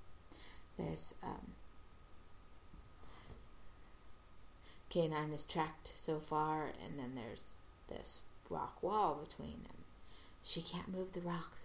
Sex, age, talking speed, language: female, 30-49, 105 wpm, English